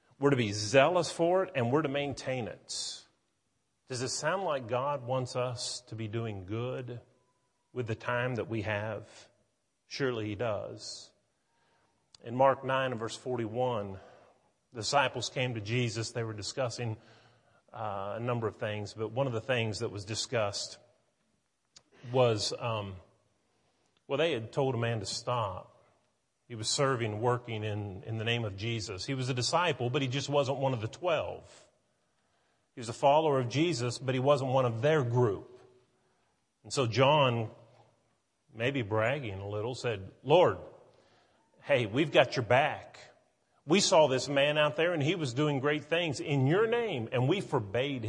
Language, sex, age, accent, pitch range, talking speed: English, male, 40-59, American, 110-135 Hz, 170 wpm